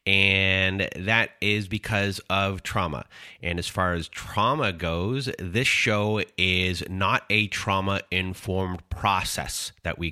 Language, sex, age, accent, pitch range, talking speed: English, male, 30-49, American, 90-110 Hz, 125 wpm